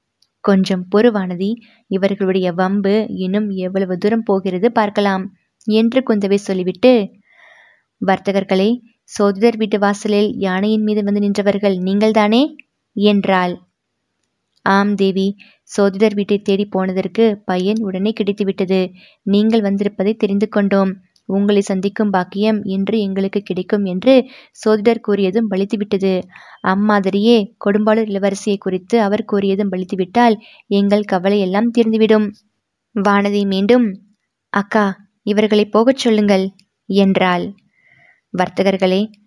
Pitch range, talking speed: 195-220 Hz, 100 wpm